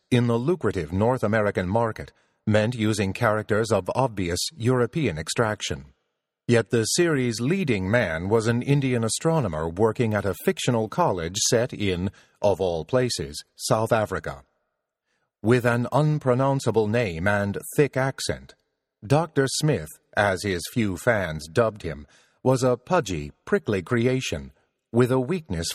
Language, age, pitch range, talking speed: English, 40-59, 100-130 Hz, 135 wpm